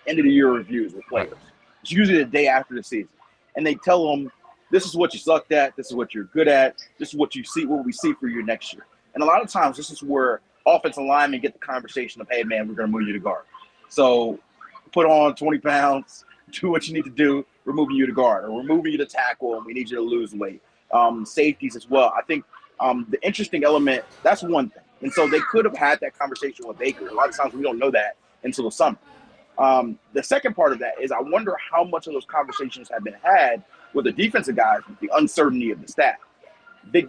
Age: 30-49